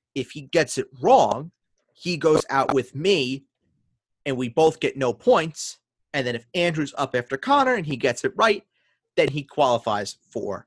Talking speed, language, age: 180 wpm, English, 30-49